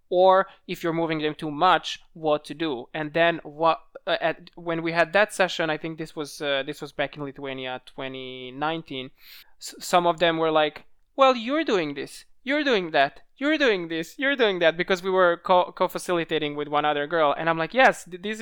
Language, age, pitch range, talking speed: English, 20-39, 150-180 Hz, 210 wpm